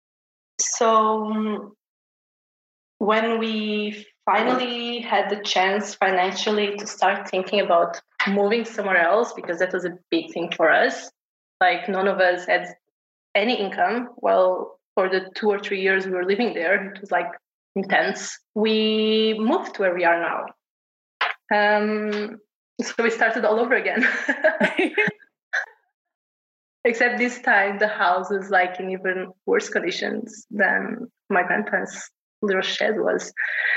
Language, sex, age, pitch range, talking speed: English, female, 20-39, 195-230 Hz, 135 wpm